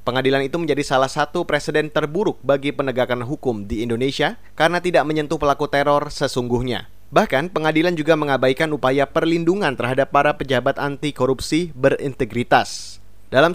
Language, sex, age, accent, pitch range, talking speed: Indonesian, male, 20-39, native, 130-160 Hz, 135 wpm